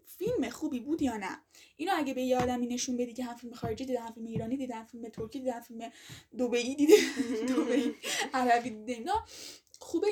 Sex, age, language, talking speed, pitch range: female, 10-29, Persian, 190 wpm, 245-310 Hz